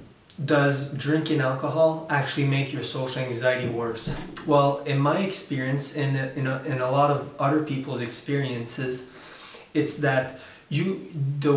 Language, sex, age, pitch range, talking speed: English, male, 20-39, 130-145 Hz, 140 wpm